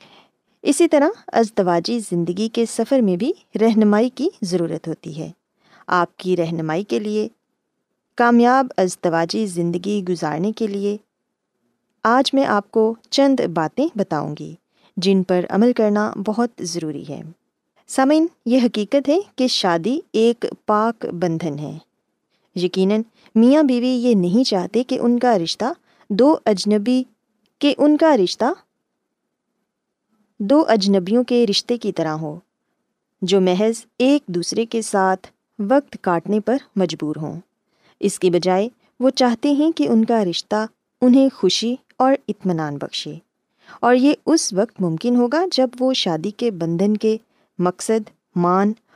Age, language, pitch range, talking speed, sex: 20-39, Urdu, 185-250 Hz, 135 wpm, female